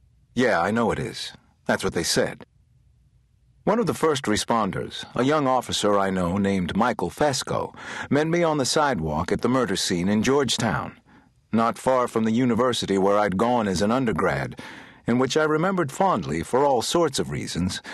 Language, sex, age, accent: English, male, 60-79, American